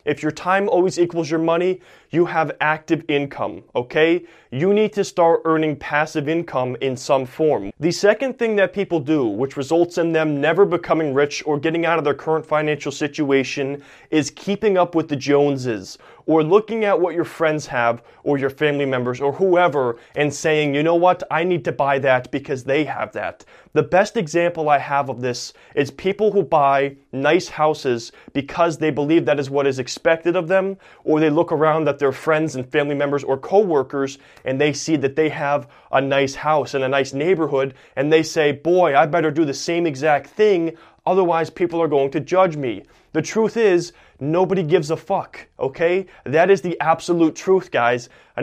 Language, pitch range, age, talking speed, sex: English, 140-175 Hz, 20-39, 195 wpm, male